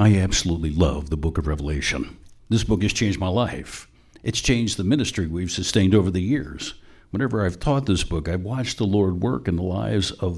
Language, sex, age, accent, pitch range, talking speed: English, male, 60-79, American, 95-125 Hz, 210 wpm